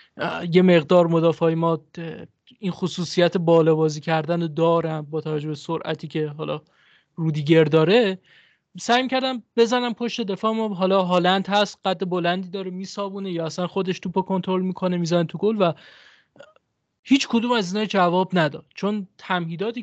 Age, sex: 20-39, male